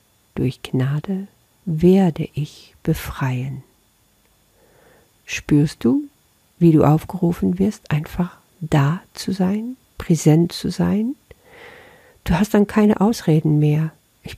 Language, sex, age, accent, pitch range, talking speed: German, female, 50-69, German, 155-200 Hz, 105 wpm